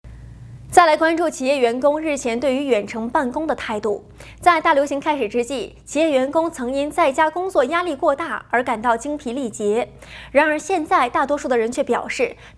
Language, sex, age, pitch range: Chinese, female, 20-39, 245-330 Hz